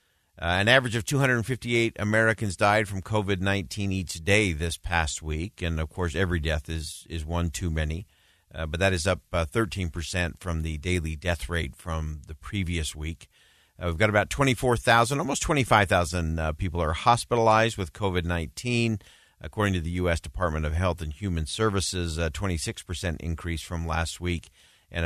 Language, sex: English, male